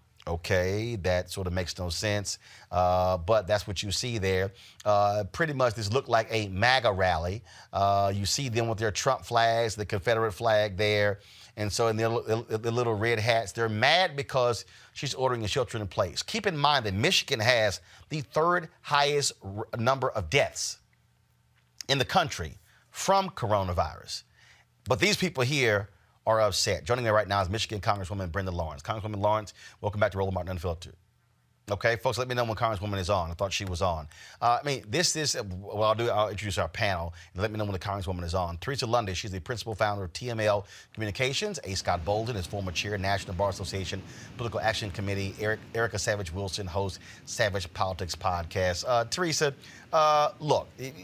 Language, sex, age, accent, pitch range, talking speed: English, male, 30-49, American, 95-120 Hz, 190 wpm